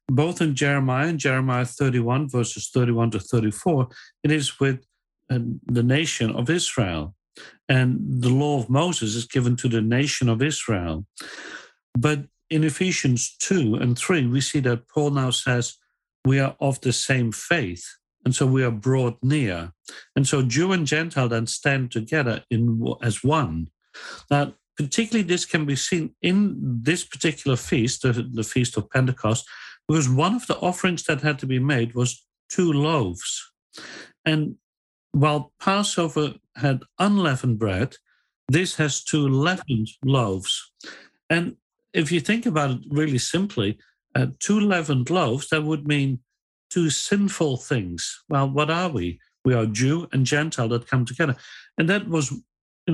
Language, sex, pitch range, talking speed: English, male, 120-155 Hz, 155 wpm